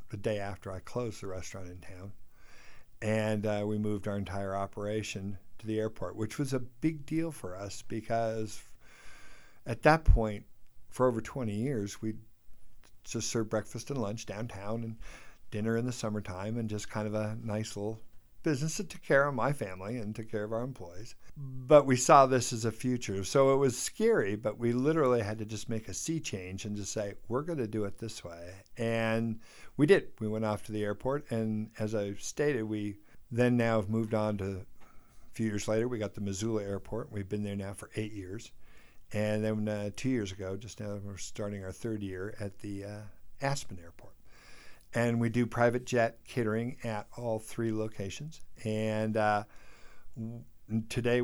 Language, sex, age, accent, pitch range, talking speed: English, male, 50-69, American, 100-115 Hz, 190 wpm